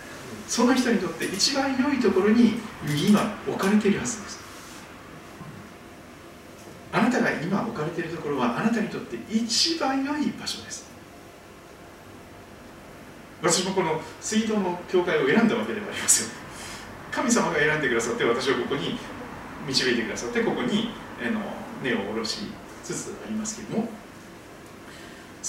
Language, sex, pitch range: Japanese, male, 165-230 Hz